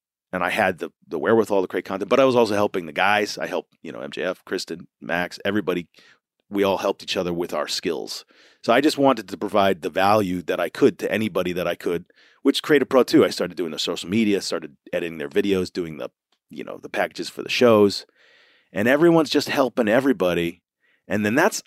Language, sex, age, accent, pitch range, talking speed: English, male, 40-59, American, 90-120 Hz, 220 wpm